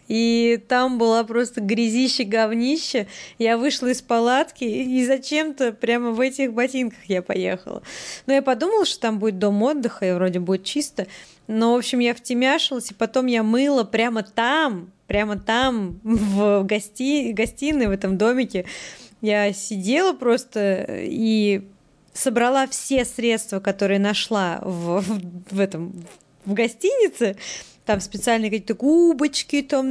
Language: Russian